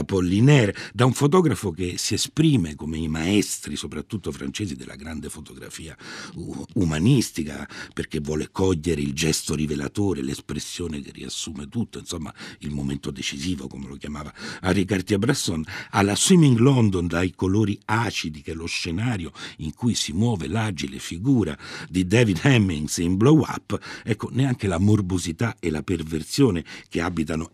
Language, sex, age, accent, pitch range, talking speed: Italian, male, 60-79, native, 80-115 Hz, 155 wpm